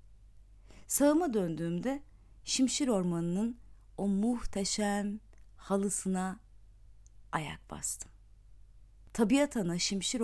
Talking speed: 70 wpm